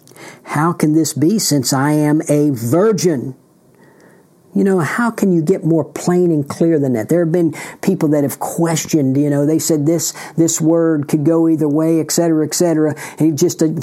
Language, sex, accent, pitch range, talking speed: English, male, American, 140-165 Hz, 190 wpm